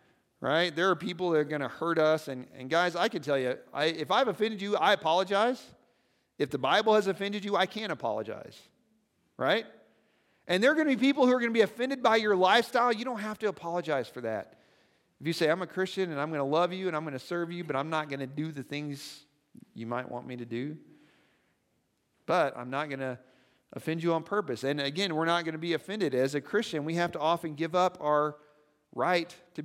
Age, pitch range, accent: 40-59, 145-180 Hz, American